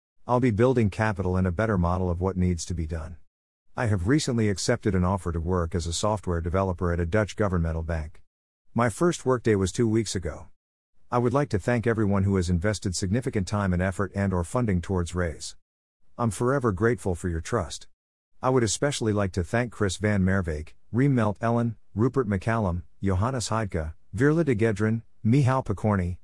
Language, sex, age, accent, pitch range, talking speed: English, male, 50-69, American, 90-120 Hz, 190 wpm